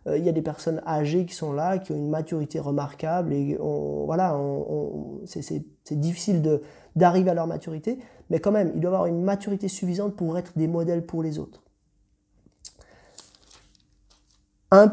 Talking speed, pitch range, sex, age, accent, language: 180 wpm, 160-225 Hz, male, 30-49, French, French